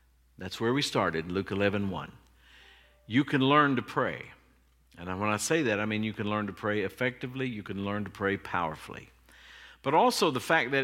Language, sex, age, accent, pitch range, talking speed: English, male, 50-69, American, 100-135 Hz, 200 wpm